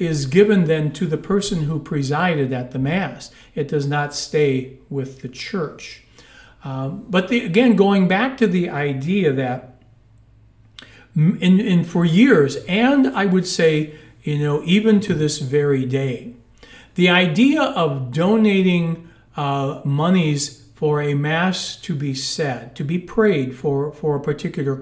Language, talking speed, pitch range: English, 145 wpm, 140-180 Hz